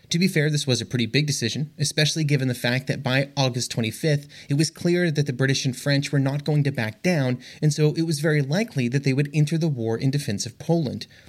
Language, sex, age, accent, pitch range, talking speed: English, male, 30-49, American, 120-155 Hz, 250 wpm